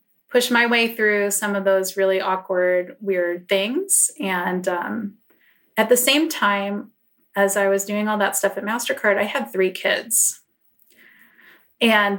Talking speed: 155 wpm